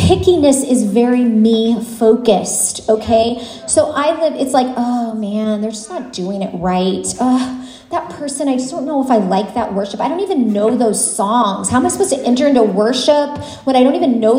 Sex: female